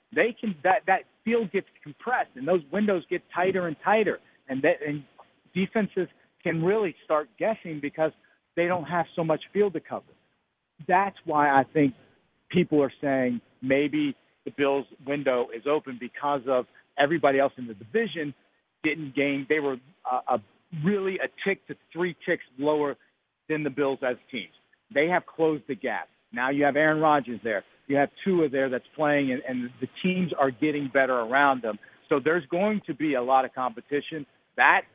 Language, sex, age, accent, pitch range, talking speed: English, male, 50-69, American, 135-175 Hz, 180 wpm